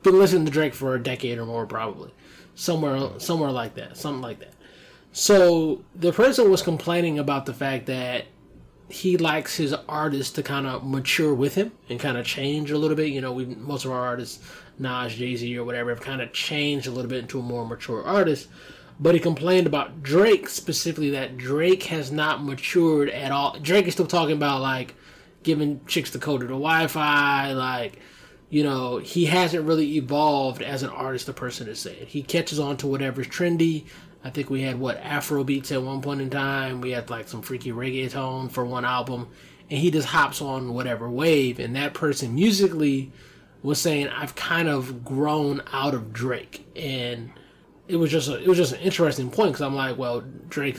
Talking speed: 200 wpm